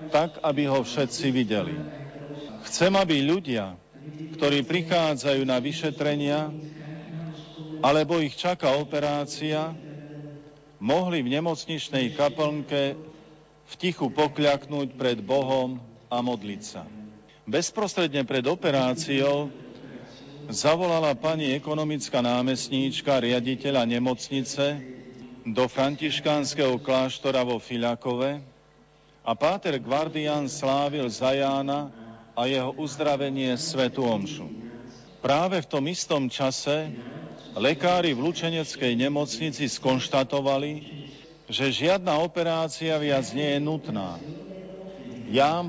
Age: 50-69